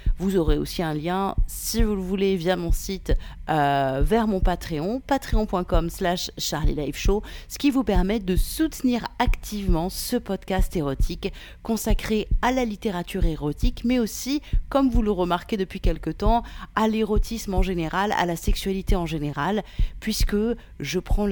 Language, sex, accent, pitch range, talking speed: French, female, French, 155-205 Hz, 155 wpm